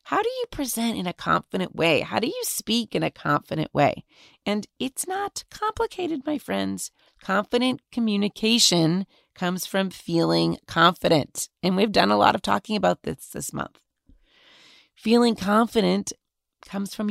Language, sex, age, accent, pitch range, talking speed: English, female, 40-59, American, 165-225 Hz, 150 wpm